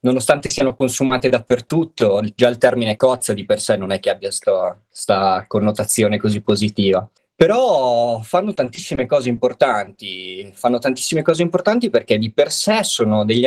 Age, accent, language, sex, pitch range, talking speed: 20-39, native, Italian, male, 110-130 Hz, 150 wpm